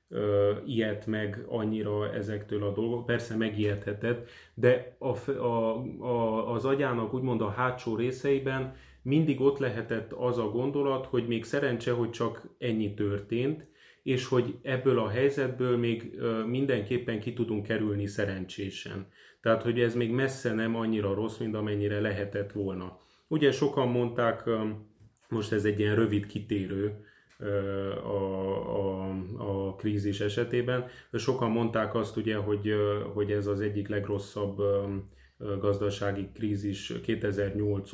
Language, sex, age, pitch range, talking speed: Hungarian, male, 30-49, 100-120 Hz, 125 wpm